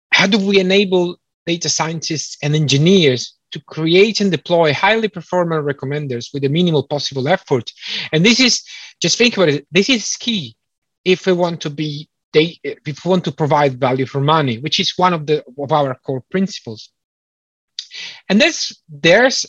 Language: English